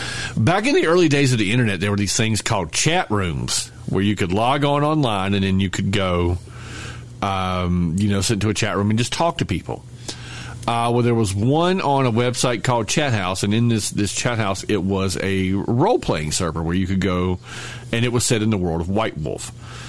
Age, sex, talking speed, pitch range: 40-59, male, 225 wpm, 95-120 Hz